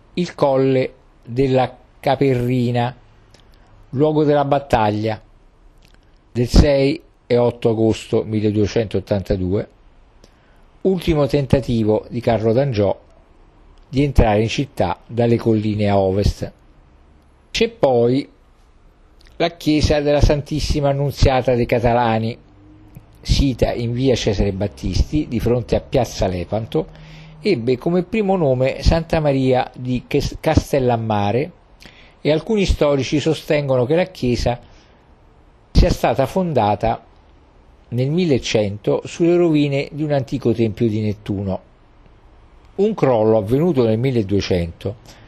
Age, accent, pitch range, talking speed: 50-69, native, 105-145 Hz, 105 wpm